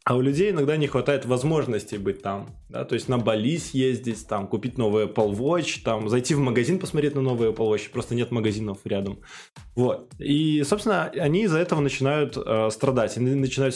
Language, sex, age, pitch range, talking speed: Russian, male, 20-39, 115-140 Hz, 190 wpm